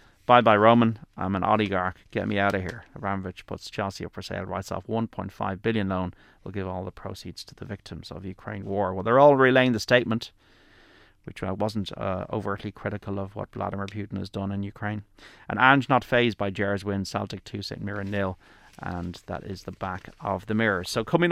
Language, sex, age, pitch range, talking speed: English, male, 30-49, 95-115 Hz, 210 wpm